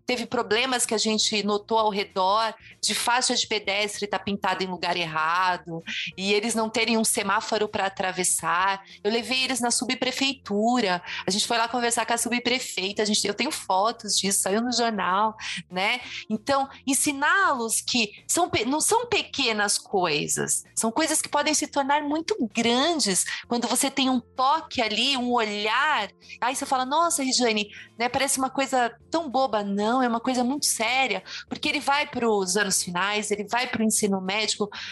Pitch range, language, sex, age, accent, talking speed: 210-275 Hz, Portuguese, female, 30-49, Brazilian, 175 wpm